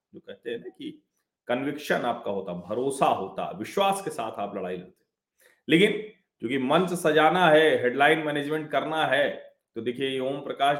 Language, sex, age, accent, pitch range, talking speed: Hindi, male, 40-59, native, 115-165 Hz, 165 wpm